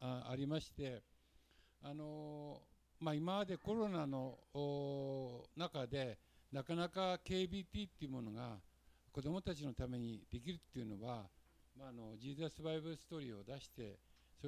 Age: 60-79